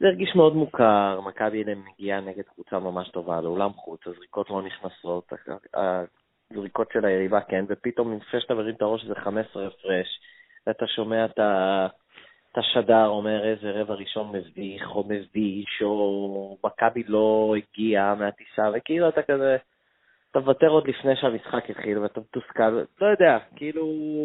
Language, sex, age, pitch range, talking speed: Hebrew, male, 20-39, 100-135 Hz, 150 wpm